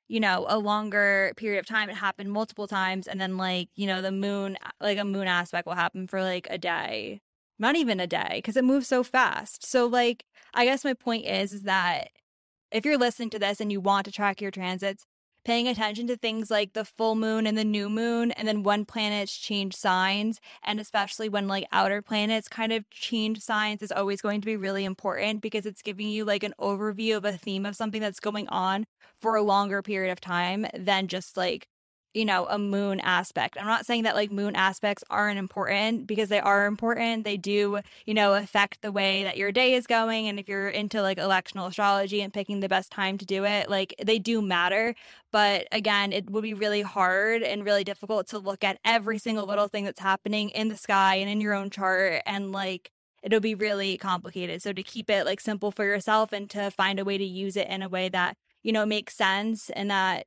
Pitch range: 195-215 Hz